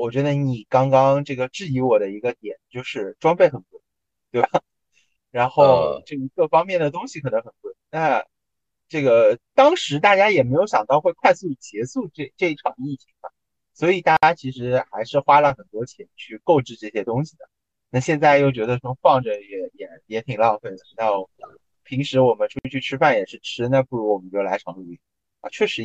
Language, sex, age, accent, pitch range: Chinese, male, 20-39, native, 125-175 Hz